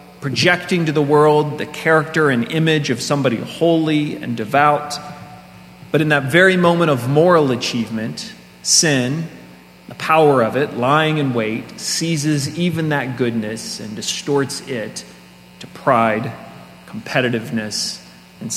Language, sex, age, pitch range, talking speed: English, male, 30-49, 105-155 Hz, 130 wpm